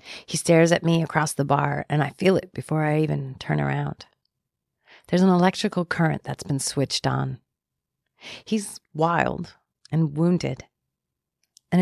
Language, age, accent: English, 40-59, American